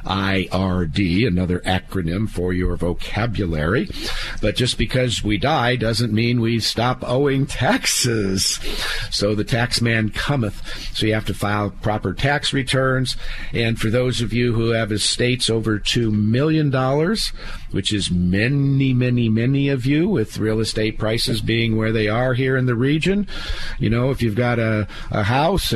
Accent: American